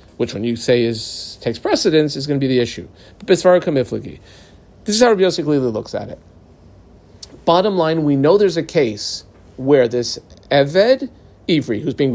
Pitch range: 120-195 Hz